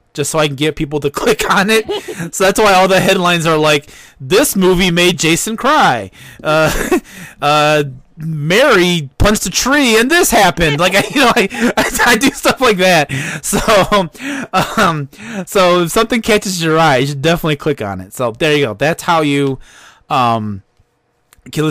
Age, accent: 20-39, American